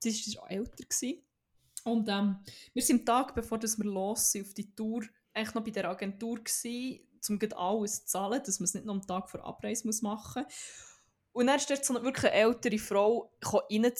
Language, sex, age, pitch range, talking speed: German, female, 20-39, 215-285 Hz, 225 wpm